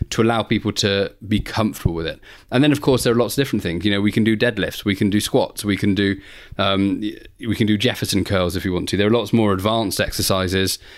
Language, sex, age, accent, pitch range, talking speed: English, male, 30-49, British, 100-115 Hz, 255 wpm